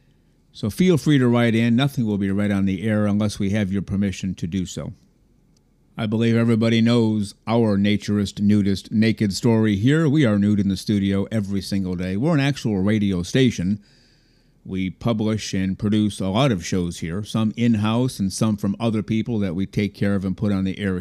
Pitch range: 100-120 Hz